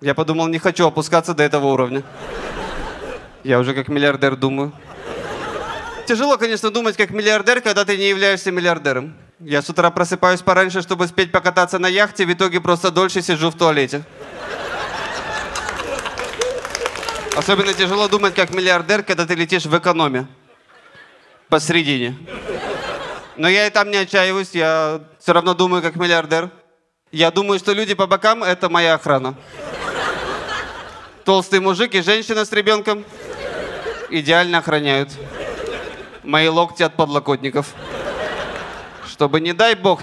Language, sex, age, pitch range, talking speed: Russian, male, 20-39, 155-195 Hz, 135 wpm